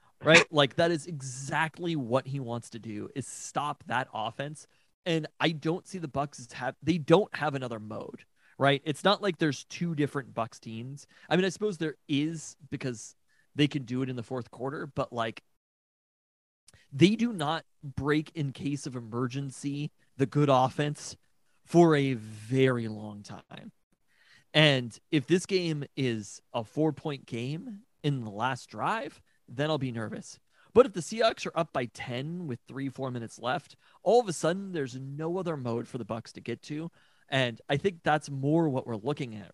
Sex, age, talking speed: male, 30-49, 180 wpm